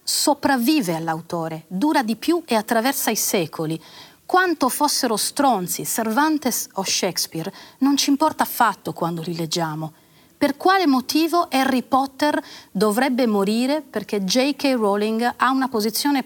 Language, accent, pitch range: Italian, native, 205-295 Hz